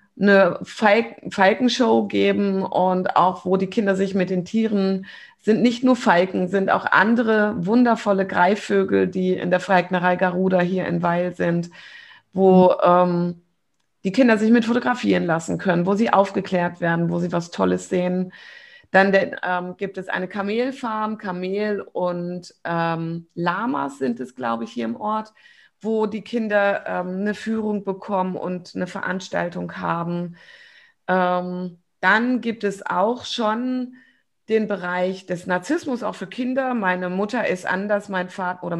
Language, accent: German, German